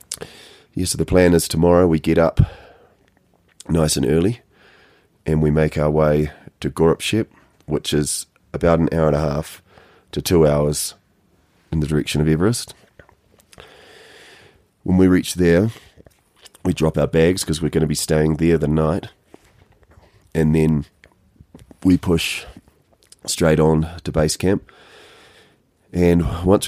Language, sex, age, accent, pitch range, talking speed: English, male, 30-49, Australian, 75-90 Hz, 145 wpm